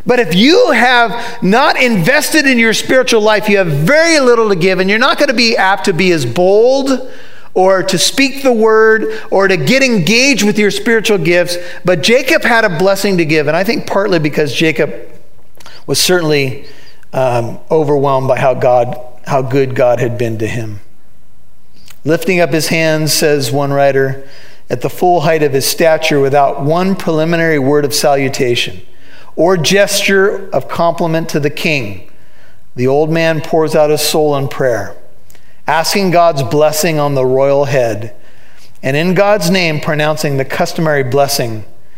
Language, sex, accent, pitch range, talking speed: English, male, American, 140-195 Hz, 165 wpm